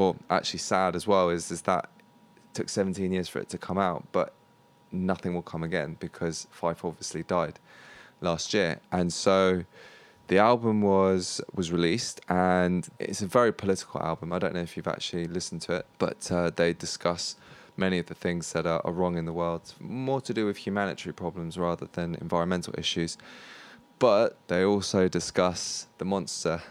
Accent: British